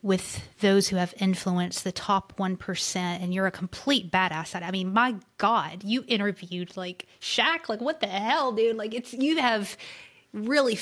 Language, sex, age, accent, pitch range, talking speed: English, female, 20-39, American, 180-210 Hz, 170 wpm